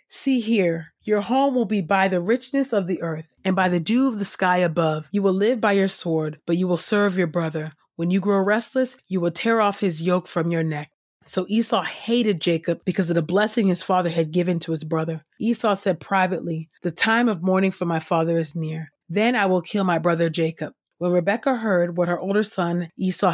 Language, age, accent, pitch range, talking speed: English, 30-49, American, 170-210 Hz, 225 wpm